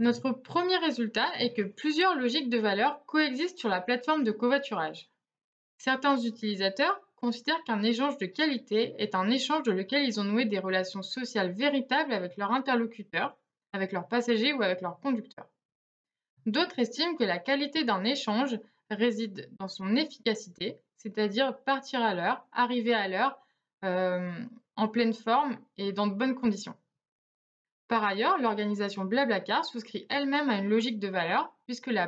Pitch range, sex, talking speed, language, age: 205-270 Hz, female, 155 wpm, French, 20-39